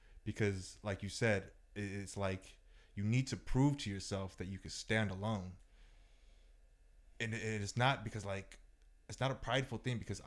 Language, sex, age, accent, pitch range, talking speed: English, male, 20-39, American, 95-115 Hz, 165 wpm